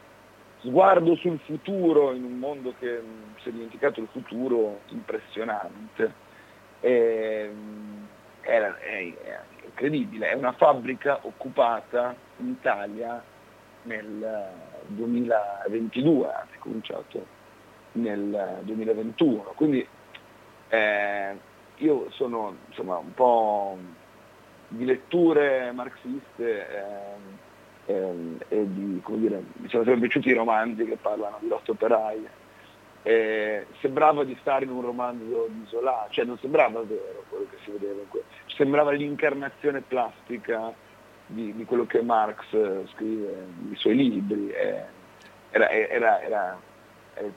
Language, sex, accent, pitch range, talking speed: Italian, male, native, 105-140 Hz, 115 wpm